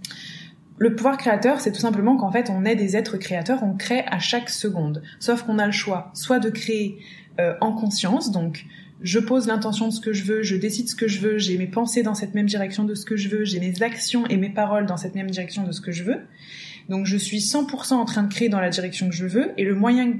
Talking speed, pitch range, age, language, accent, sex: 260 wpm, 185-225 Hz, 20-39, French, French, female